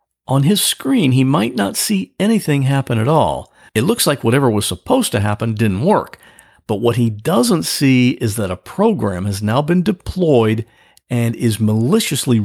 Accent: American